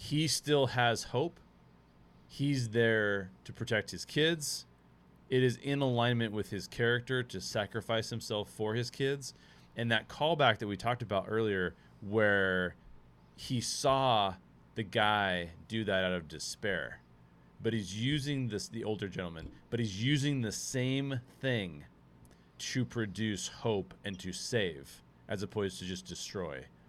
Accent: American